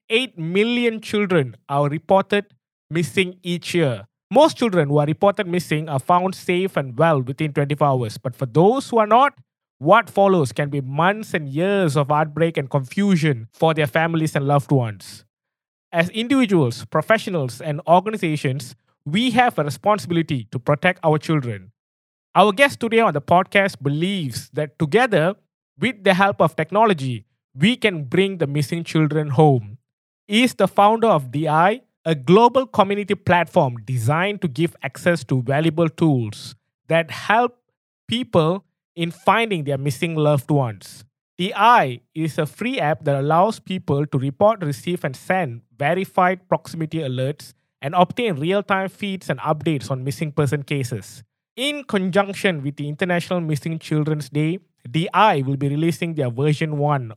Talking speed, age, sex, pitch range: 150 wpm, 20-39, male, 145-195 Hz